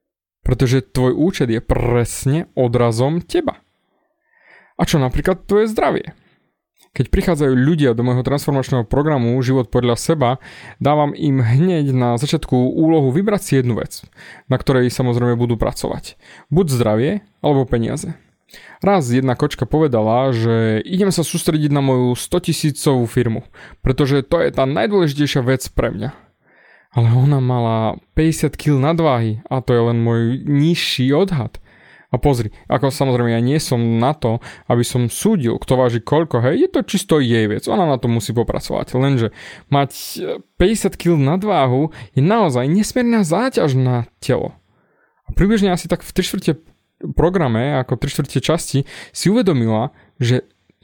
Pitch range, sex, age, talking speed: 125-165 Hz, male, 20-39, 150 wpm